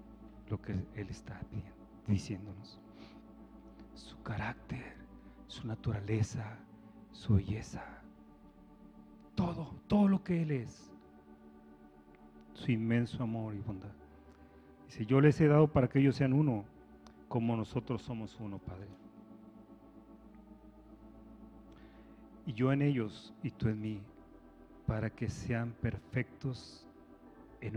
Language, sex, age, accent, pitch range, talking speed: Spanish, male, 40-59, Mexican, 80-125 Hz, 110 wpm